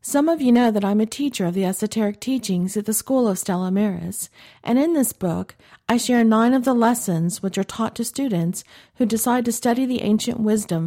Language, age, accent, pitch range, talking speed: English, 50-69, American, 185-230 Hz, 220 wpm